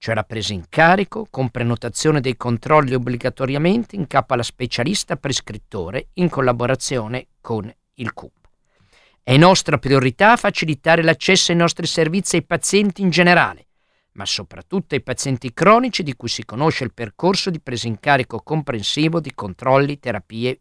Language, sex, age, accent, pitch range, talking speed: Italian, male, 50-69, native, 125-170 Hz, 150 wpm